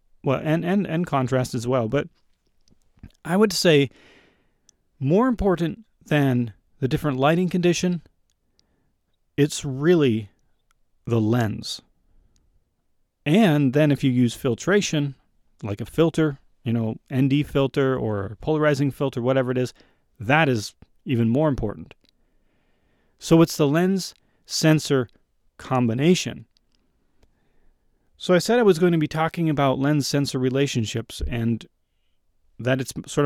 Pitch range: 125-170 Hz